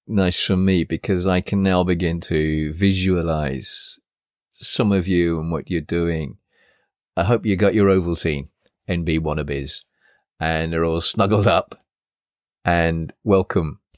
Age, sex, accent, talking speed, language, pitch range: 30-49, male, British, 140 wpm, English, 80-100 Hz